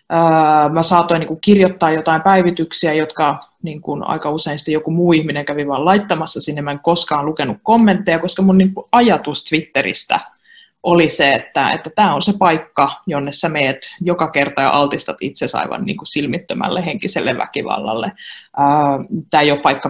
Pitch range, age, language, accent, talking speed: 155-205 Hz, 20-39, Finnish, native, 160 wpm